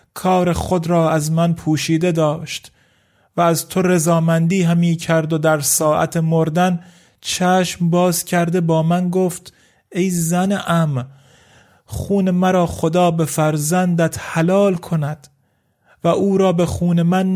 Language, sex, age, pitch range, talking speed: Persian, male, 30-49, 160-185 Hz, 135 wpm